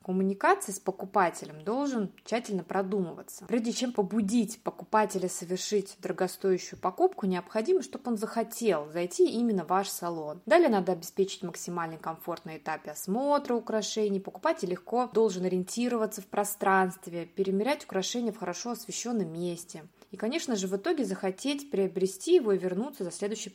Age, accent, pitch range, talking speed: 20-39, native, 185-225 Hz, 140 wpm